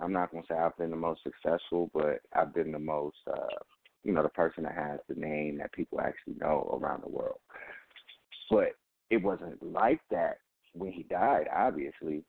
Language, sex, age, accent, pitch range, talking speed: English, male, 30-49, American, 80-105 Hz, 195 wpm